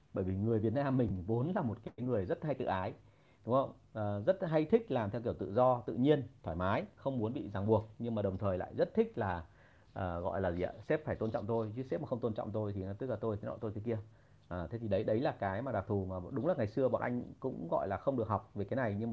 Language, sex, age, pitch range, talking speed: Vietnamese, male, 30-49, 105-135 Hz, 305 wpm